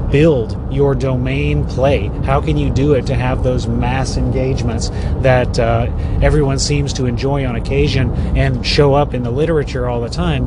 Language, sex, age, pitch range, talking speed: English, male, 30-49, 95-145 Hz, 180 wpm